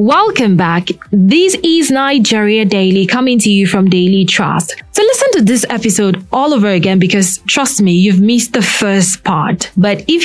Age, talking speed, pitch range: 20-39, 175 wpm, 180-235 Hz